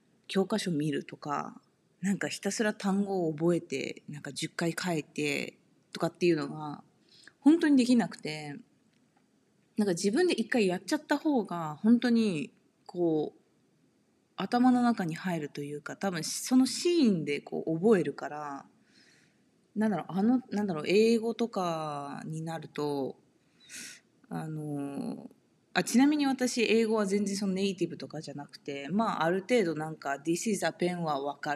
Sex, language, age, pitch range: female, Japanese, 20-39, 155-235 Hz